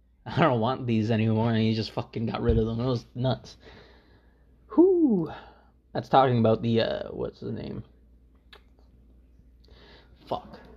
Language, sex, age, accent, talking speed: English, male, 20-39, American, 145 wpm